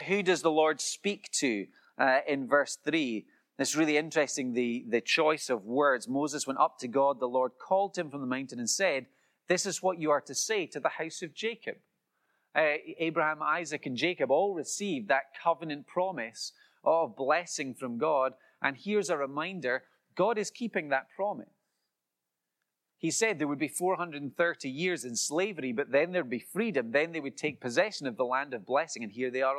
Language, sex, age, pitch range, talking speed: English, male, 30-49, 125-165 Hz, 195 wpm